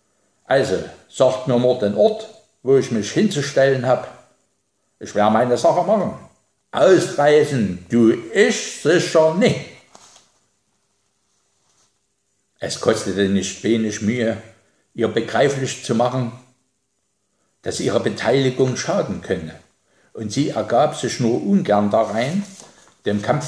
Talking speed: 115 wpm